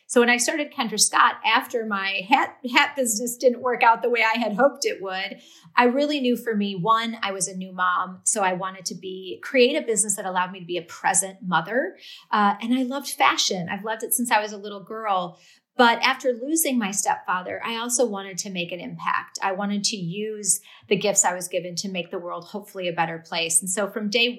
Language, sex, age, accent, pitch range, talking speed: English, female, 30-49, American, 185-240 Hz, 235 wpm